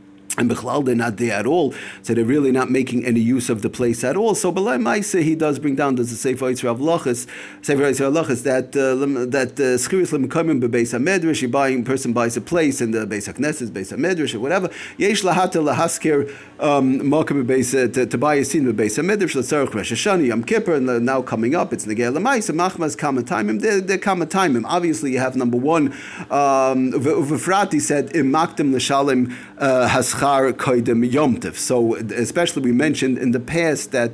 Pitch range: 120-145 Hz